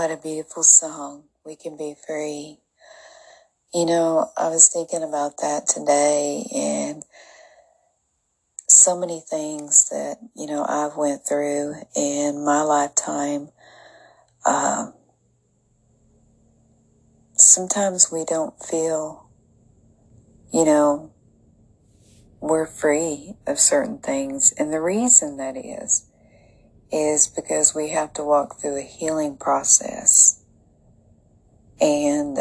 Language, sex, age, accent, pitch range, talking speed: English, female, 40-59, American, 140-160 Hz, 105 wpm